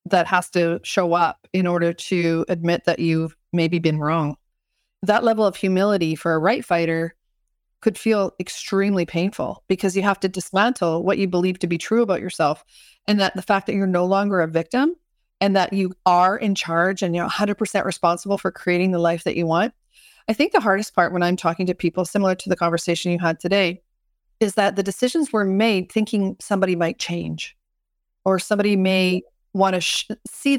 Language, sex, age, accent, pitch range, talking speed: English, female, 40-59, American, 175-205 Hz, 195 wpm